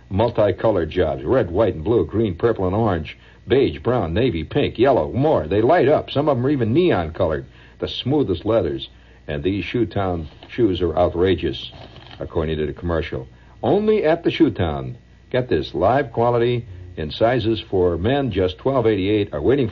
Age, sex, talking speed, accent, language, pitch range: 60-79, male, 175 wpm, American, English, 80-115 Hz